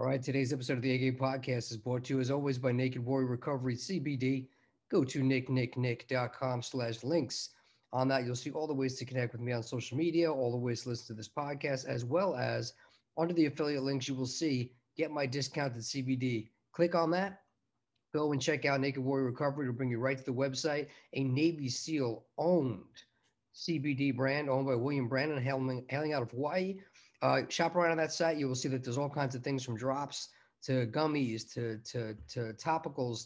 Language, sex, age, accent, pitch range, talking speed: English, male, 40-59, American, 125-145 Hz, 205 wpm